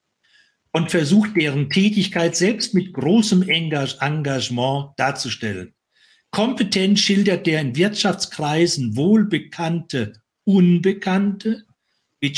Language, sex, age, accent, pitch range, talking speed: German, male, 60-79, German, 125-175 Hz, 85 wpm